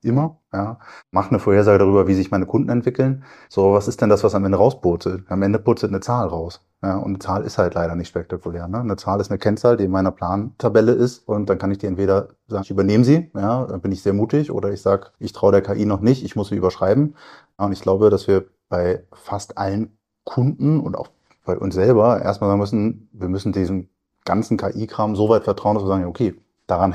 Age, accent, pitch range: 30-49, German, 95-110 Hz